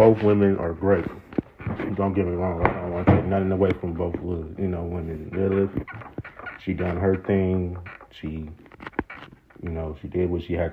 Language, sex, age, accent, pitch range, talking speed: English, male, 40-59, American, 80-95 Hz, 185 wpm